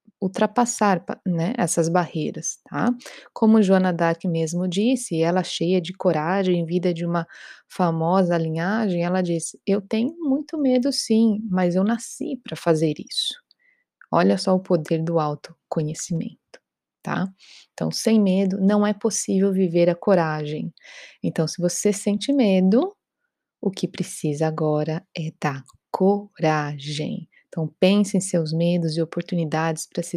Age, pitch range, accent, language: 20-39, 165-205 Hz, Brazilian, Portuguese